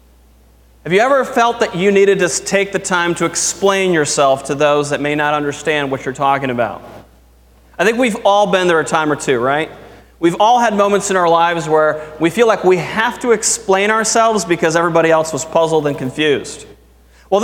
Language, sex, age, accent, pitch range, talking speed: English, male, 30-49, American, 150-190 Hz, 205 wpm